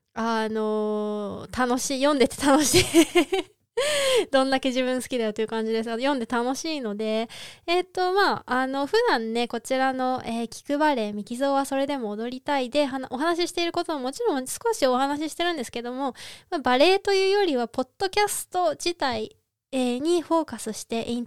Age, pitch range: 20-39, 220-290 Hz